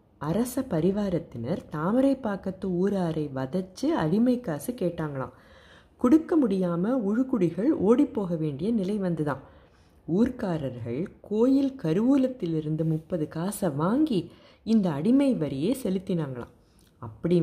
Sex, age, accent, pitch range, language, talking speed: female, 30-49, native, 150-215 Hz, Tamil, 95 wpm